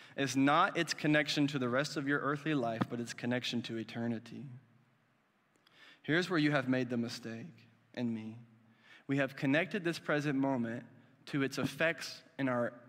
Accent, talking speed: American, 170 wpm